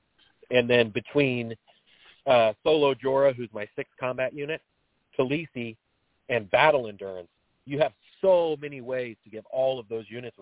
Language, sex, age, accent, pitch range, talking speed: English, male, 30-49, American, 110-140 Hz, 150 wpm